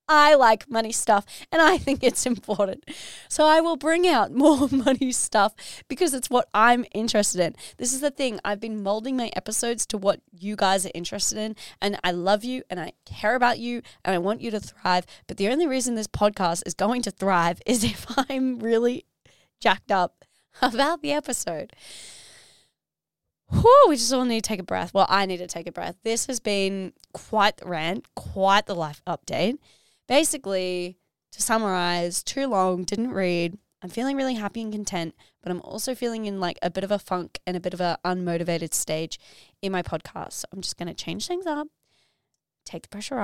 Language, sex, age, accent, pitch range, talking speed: English, female, 20-39, Australian, 180-255 Hz, 195 wpm